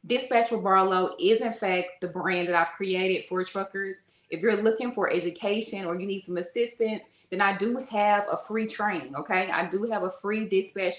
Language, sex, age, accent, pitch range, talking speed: English, female, 20-39, American, 180-215 Hz, 200 wpm